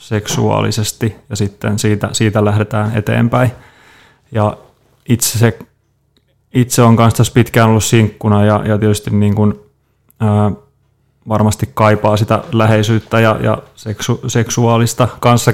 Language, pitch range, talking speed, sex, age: Finnish, 105-120 Hz, 115 wpm, male, 30-49